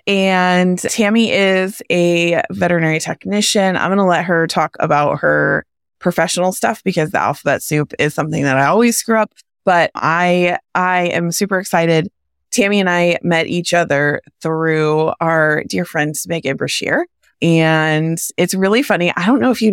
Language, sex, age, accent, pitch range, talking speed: English, female, 20-39, American, 155-195 Hz, 165 wpm